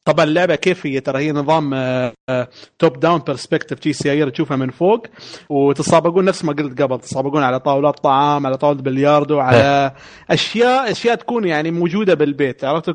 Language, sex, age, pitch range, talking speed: Arabic, male, 30-49, 140-175 Hz, 160 wpm